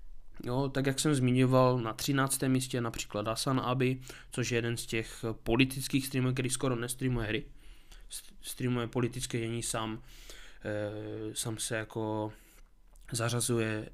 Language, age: Czech, 20-39